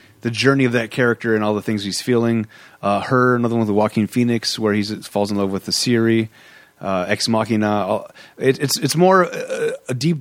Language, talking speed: English, 225 wpm